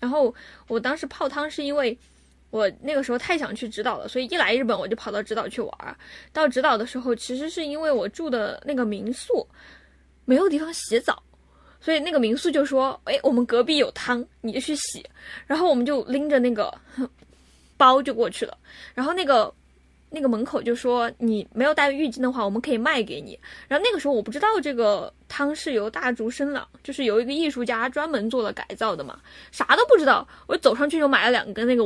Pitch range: 240-300 Hz